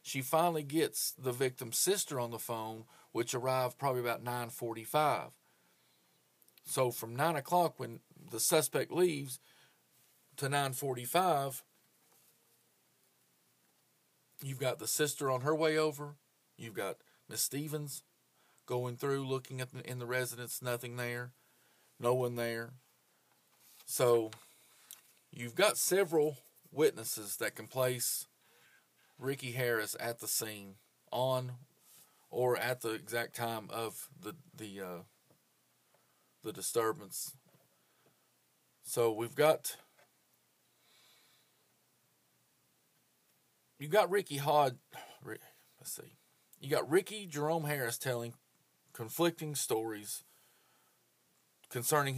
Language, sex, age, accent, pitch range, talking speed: English, male, 40-59, American, 120-150 Hz, 105 wpm